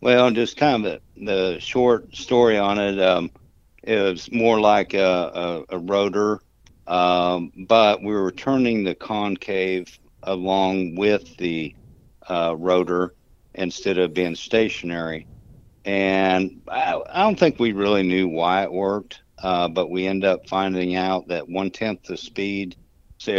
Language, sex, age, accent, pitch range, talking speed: English, male, 60-79, American, 90-105 Hz, 150 wpm